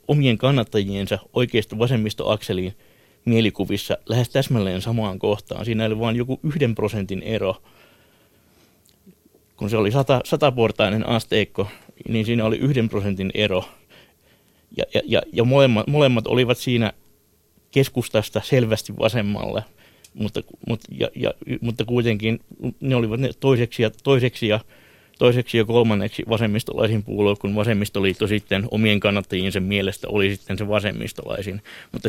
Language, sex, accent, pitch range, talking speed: Finnish, male, native, 105-125 Hz, 125 wpm